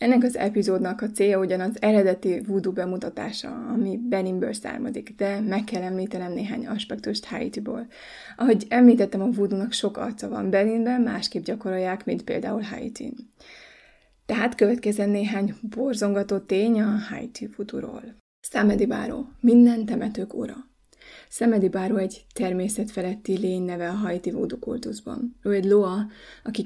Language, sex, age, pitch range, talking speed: Hungarian, female, 20-39, 190-235 Hz, 130 wpm